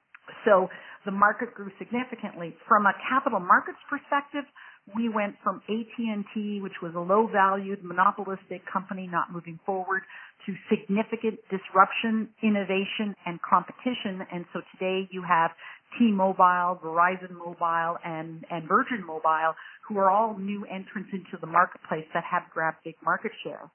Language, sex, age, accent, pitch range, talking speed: English, female, 50-69, American, 180-220 Hz, 140 wpm